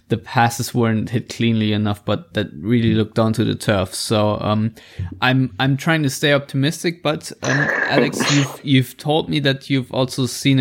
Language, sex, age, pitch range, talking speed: English, male, 20-39, 105-135 Hz, 180 wpm